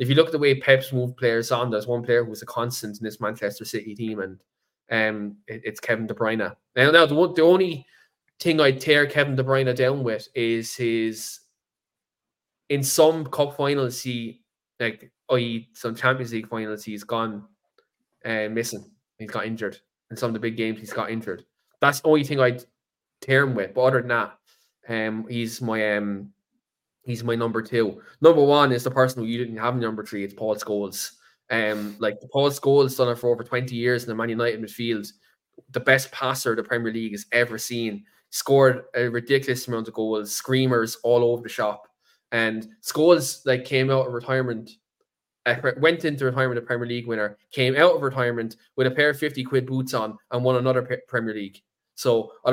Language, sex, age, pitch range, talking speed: English, male, 20-39, 110-130 Hz, 205 wpm